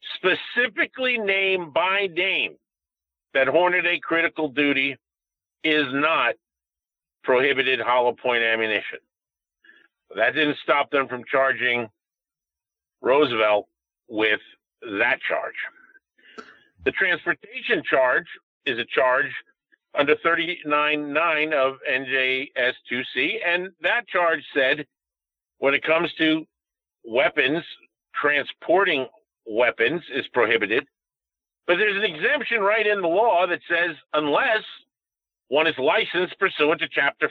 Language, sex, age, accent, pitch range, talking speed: English, male, 50-69, American, 125-175 Hz, 105 wpm